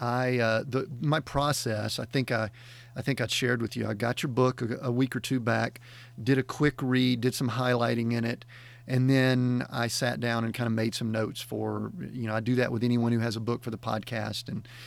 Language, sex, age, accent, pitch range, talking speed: English, male, 40-59, American, 120-140 Hz, 240 wpm